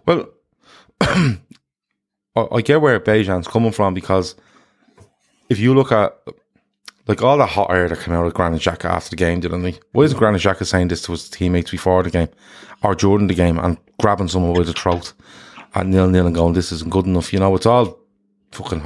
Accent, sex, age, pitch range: Irish, male, 20-39, 90-110 Hz